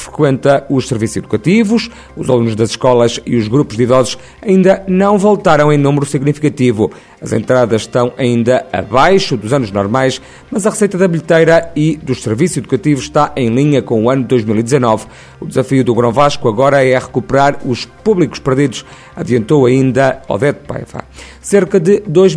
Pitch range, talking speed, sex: 120-150 Hz, 165 wpm, male